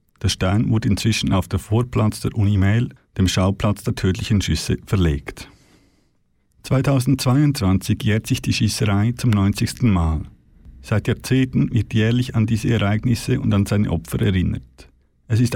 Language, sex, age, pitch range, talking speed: German, male, 50-69, 105-125 Hz, 145 wpm